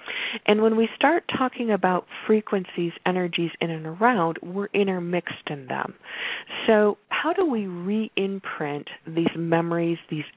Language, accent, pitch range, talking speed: English, American, 165-215 Hz, 135 wpm